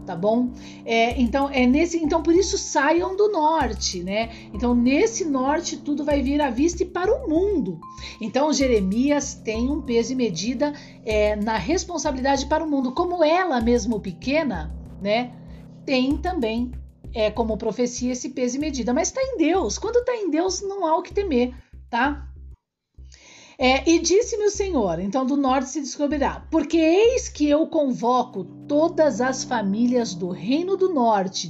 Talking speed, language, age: 165 wpm, Portuguese, 50-69